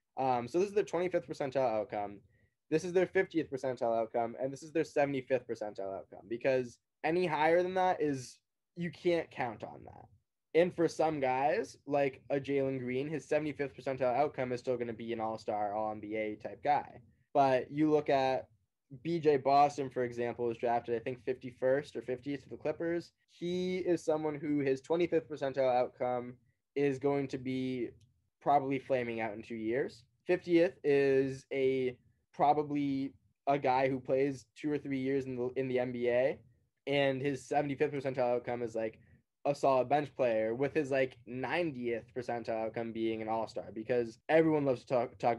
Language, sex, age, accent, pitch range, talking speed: English, male, 10-29, American, 120-150 Hz, 175 wpm